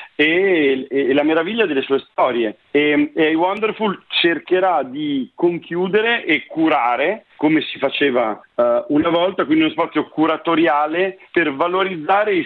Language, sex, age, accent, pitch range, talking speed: Italian, male, 50-69, native, 135-180 Hz, 135 wpm